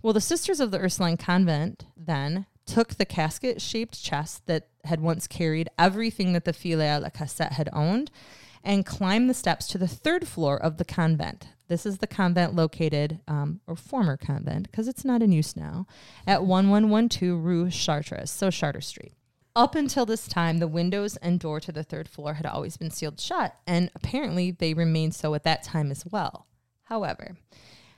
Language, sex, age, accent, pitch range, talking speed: English, female, 20-39, American, 150-195 Hz, 185 wpm